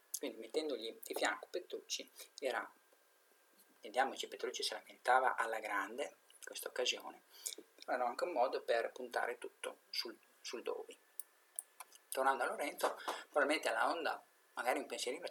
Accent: native